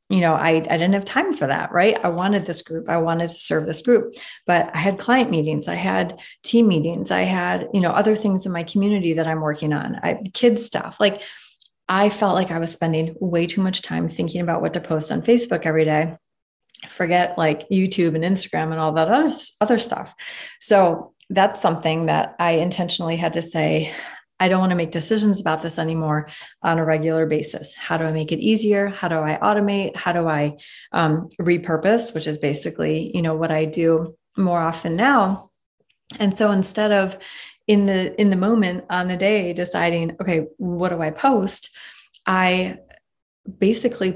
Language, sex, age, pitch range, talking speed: English, female, 30-49, 160-200 Hz, 195 wpm